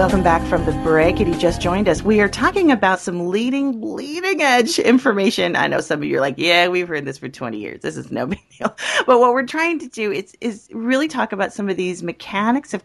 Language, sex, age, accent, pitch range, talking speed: English, female, 40-59, American, 170-220 Hz, 250 wpm